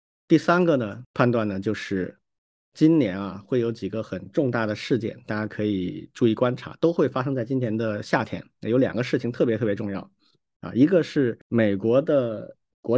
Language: Chinese